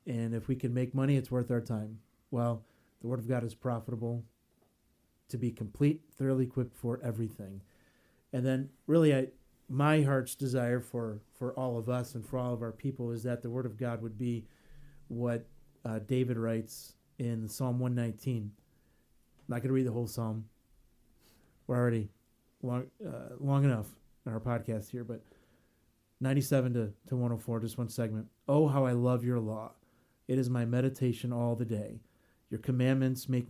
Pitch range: 115-130 Hz